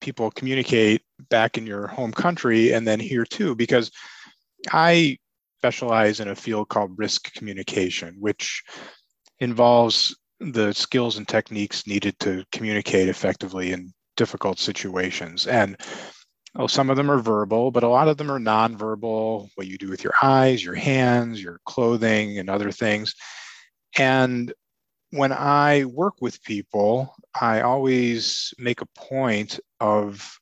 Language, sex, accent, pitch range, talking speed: English, male, American, 105-125 Hz, 140 wpm